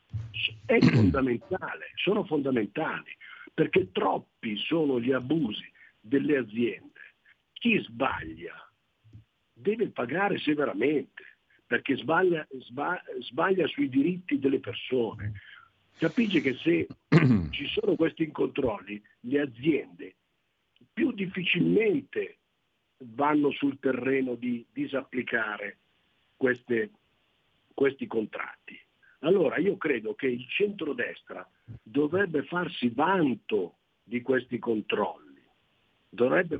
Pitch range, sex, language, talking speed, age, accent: 120-170 Hz, male, Italian, 90 wpm, 50-69, native